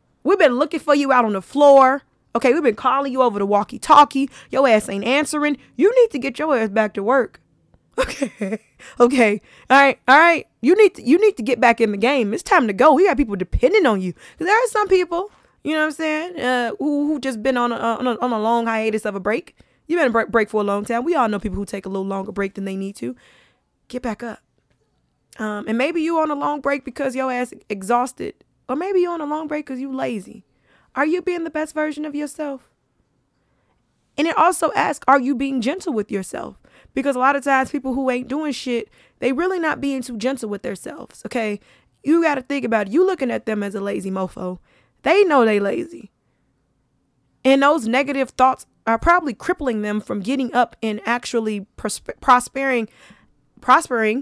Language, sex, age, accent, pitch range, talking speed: English, female, 20-39, American, 225-295 Hz, 220 wpm